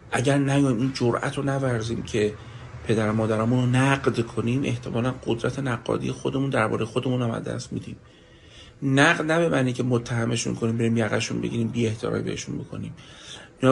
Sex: male